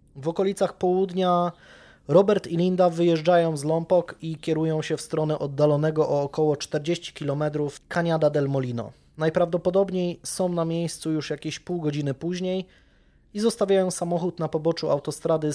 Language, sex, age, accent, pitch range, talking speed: Polish, male, 20-39, native, 135-175 Hz, 145 wpm